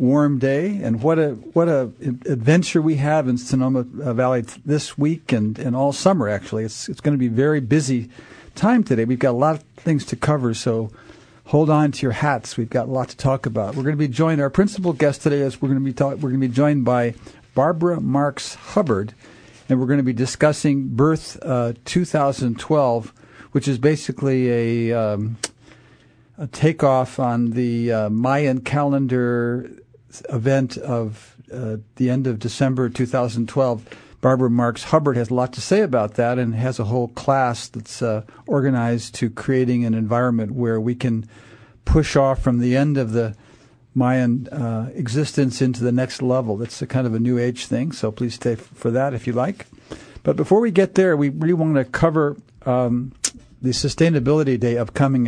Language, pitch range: English, 120-145 Hz